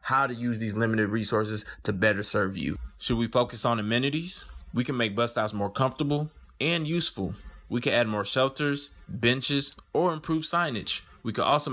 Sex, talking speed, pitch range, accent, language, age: male, 185 wpm, 105-135 Hz, American, English, 20-39